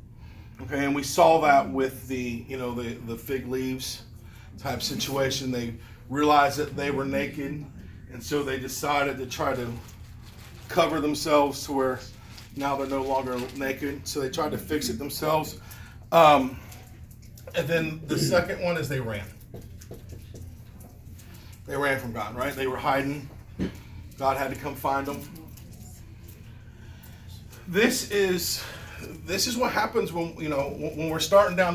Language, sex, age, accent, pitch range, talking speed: English, male, 40-59, American, 110-150 Hz, 150 wpm